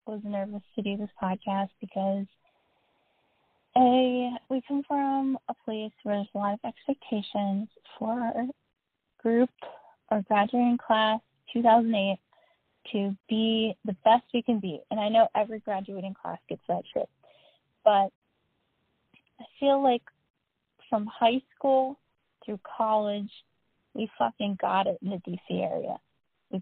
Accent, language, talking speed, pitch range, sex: American, English, 135 wpm, 205-245 Hz, female